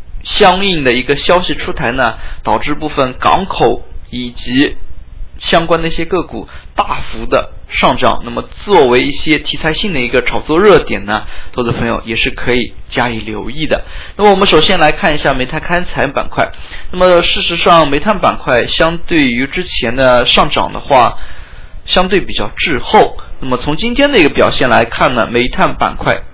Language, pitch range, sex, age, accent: Chinese, 115-165 Hz, male, 20-39, native